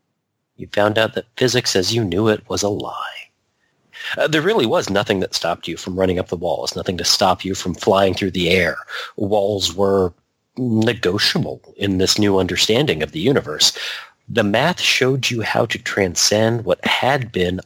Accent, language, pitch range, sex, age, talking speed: American, English, 95-110 Hz, male, 40-59, 185 wpm